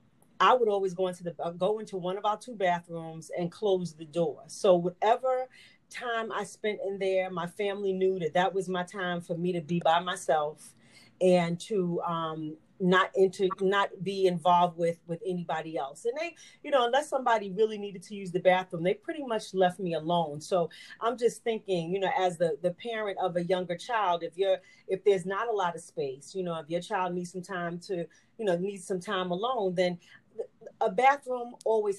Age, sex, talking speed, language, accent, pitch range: 40-59, female, 205 wpm, English, American, 175-210 Hz